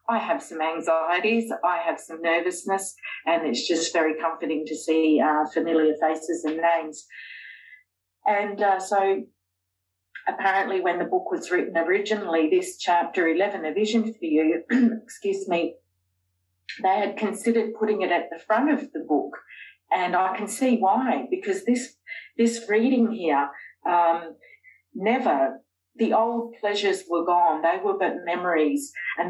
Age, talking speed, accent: 40-59, 145 wpm, Australian